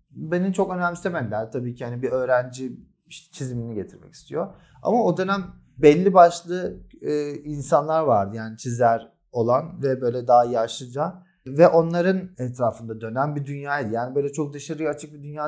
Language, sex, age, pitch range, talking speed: Turkish, male, 40-59, 120-165 Hz, 155 wpm